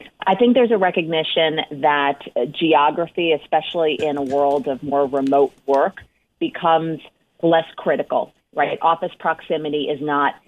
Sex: female